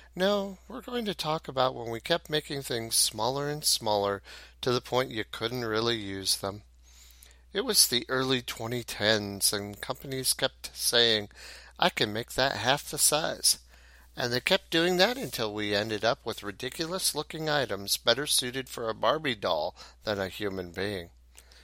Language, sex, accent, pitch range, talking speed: English, male, American, 100-145 Hz, 170 wpm